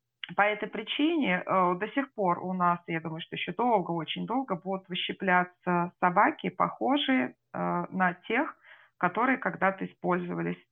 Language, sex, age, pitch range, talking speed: Russian, female, 20-39, 165-190 Hz, 145 wpm